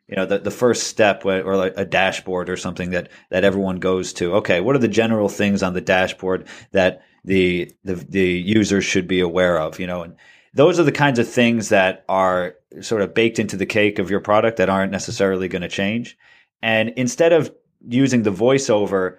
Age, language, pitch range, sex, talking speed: 30-49, English, 95-115 Hz, male, 210 wpm